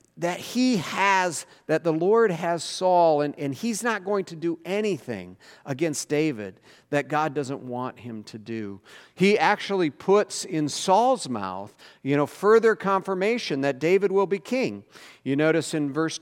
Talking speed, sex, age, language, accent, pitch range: 165 wpm, male, 50-69, English, American, 130-195 Hz